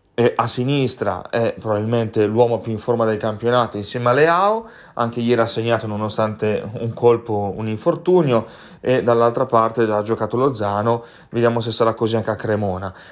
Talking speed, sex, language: 160 wpm, male, Italian